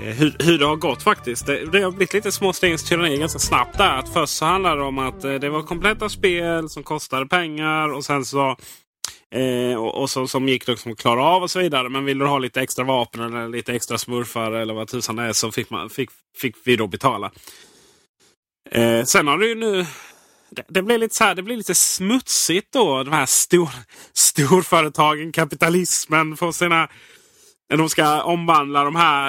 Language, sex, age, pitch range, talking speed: Swedish, male, 30-49, 130-175 Hz, 205 wpm